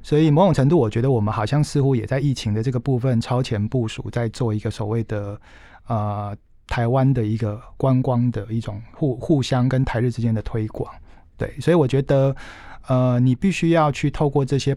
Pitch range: 110-135 Hz